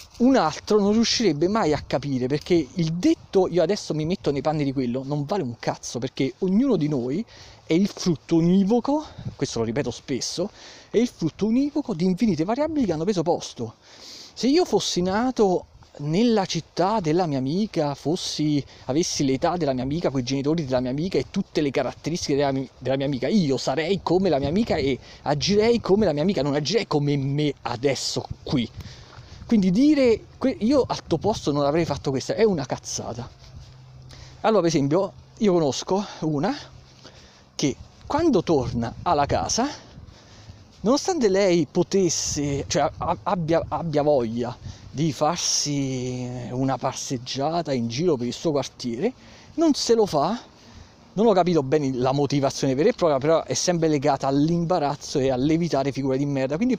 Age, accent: 30-49, native